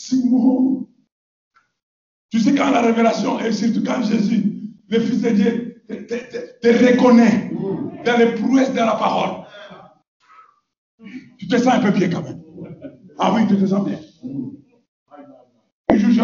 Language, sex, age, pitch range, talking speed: French, male, 60-79, 200-245 Hz, 140 wpm